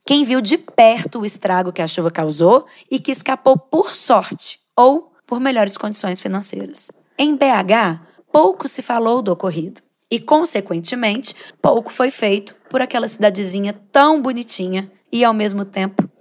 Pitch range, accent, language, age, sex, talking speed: 205-260 Hz, Brazilian, Portuguese, 20-39, female, 150 wpm